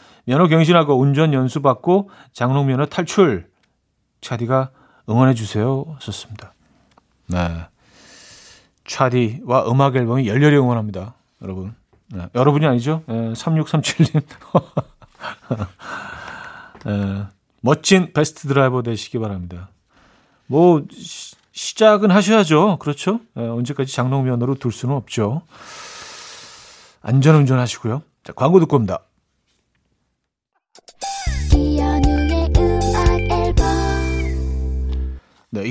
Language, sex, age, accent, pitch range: Korean, male, 40-59, native, 105-150 Hz